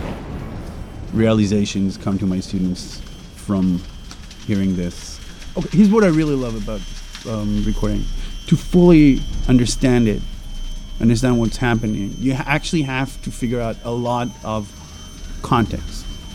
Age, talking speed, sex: 30-49, 125 wpm, male